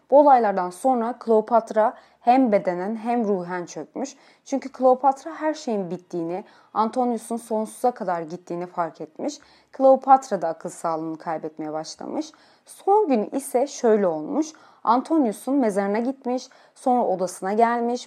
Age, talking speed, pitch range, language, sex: 30-49, 120 wpm, 190-265 Hz, Turkish, female